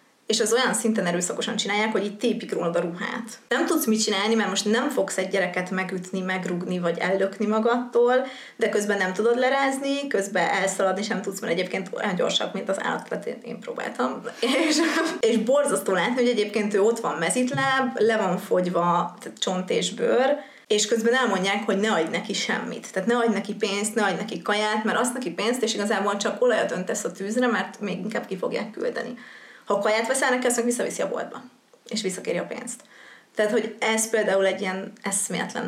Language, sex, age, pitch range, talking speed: Hungarian, female, 20-39, 190-235 Hz, 185 wpm